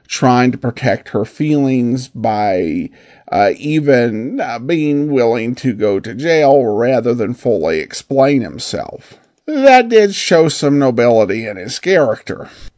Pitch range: 135-195 Hz